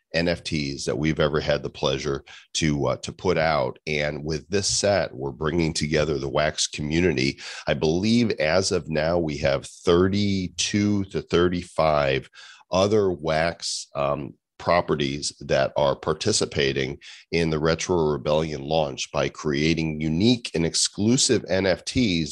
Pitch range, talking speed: 75-95 Hz, 135 wpm